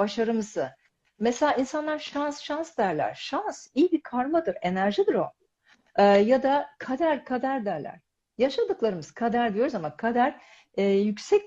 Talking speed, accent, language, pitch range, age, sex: 130 wpm, native, Turkish, 190-230 Hz, 50-69, female